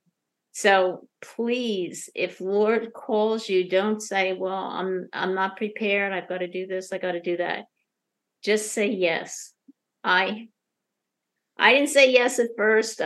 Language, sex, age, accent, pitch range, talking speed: English, female, 50-69, American, 180-215 Hz, 150 wpm